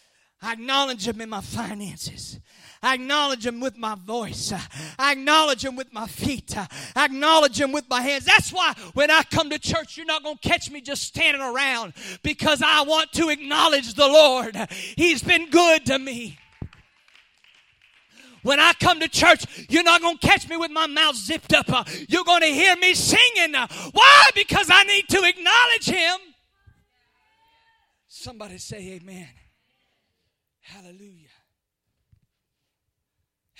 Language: English